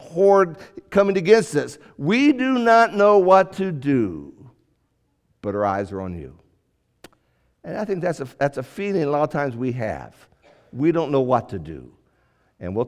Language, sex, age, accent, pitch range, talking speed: English, male, 60-79, American, 140-200 Hz, 175 wpm